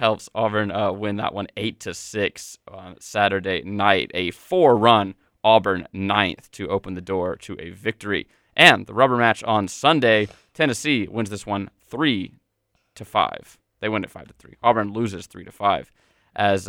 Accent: American